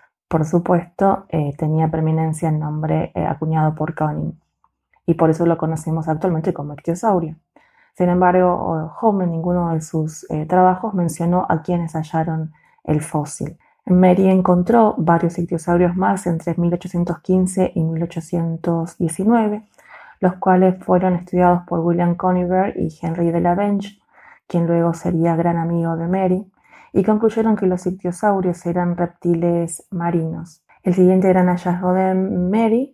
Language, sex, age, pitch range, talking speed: Spanish, female, 20-39, 165-190 Hz, 140 wpm